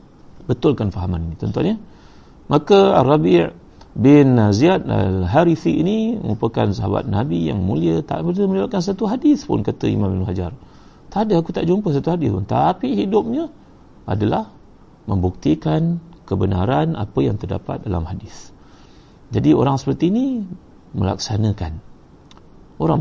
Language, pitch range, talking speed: Malay, 105-155 Hz, 130 wpm